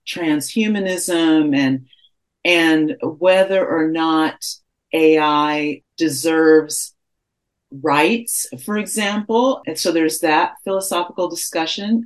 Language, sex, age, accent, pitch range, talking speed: English, female, 40-59, American, 145-175 Hz, 85 wpm